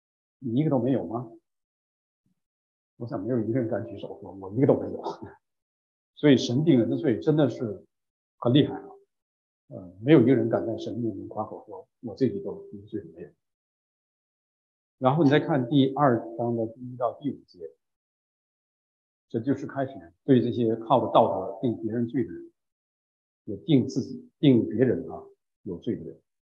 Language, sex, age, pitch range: English, male, 50-69, 115-170 Hz